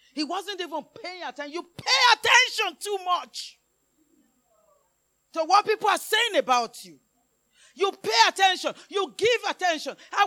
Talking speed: 140 wpm